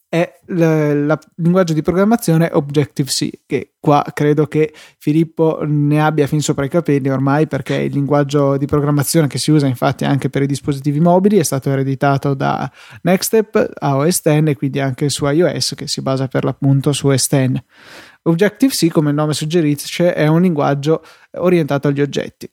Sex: male